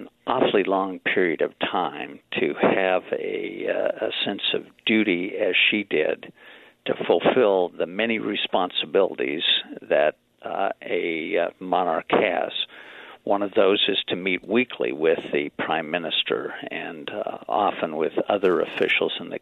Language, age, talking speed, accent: English, 50-69, 140 wpm, American